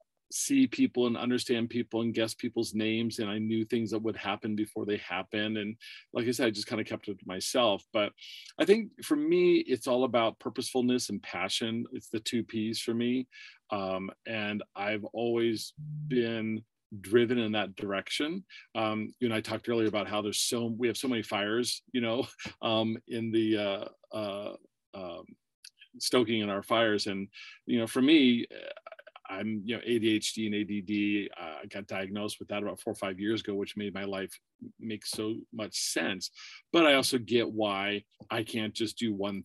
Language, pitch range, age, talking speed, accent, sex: English, 105-120 Hz, 40-59, 190 wpm, American, male